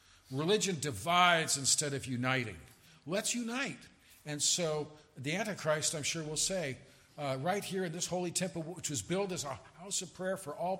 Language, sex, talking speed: English, male, 180 wpm